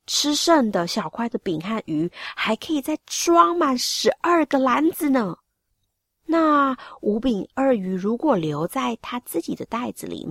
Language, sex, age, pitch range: Chinese, female, 30-49, 170-250 Hz